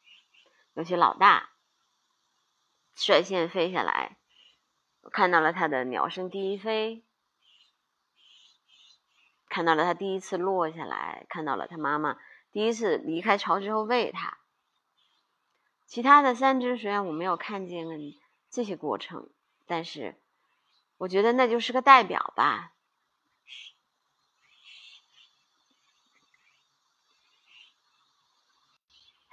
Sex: female